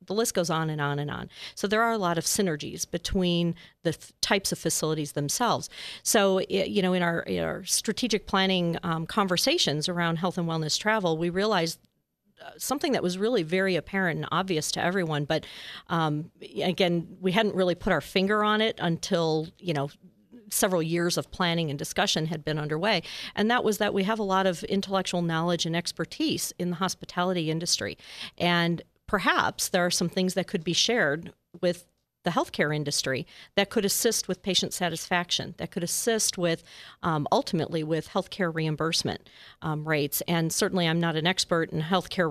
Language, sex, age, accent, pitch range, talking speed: English, female, 40-59, American, 160-190 Hz, 185 wpm